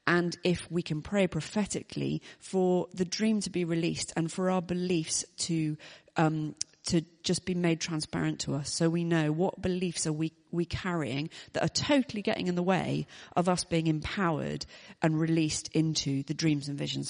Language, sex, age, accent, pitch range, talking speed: English, female, 40-59, British, 150-180 Hz, 185 wpm